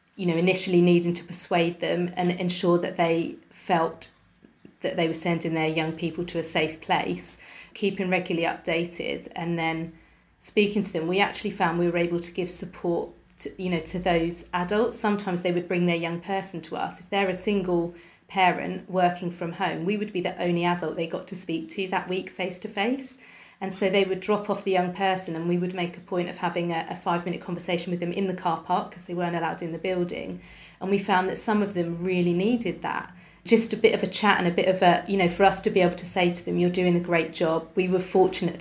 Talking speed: 235 wpm